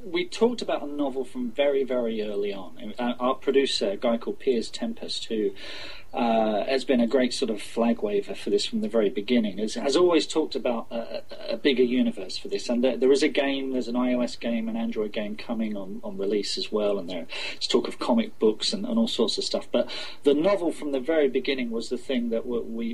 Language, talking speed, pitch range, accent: English, 230 wpm, 115-190 Hz, British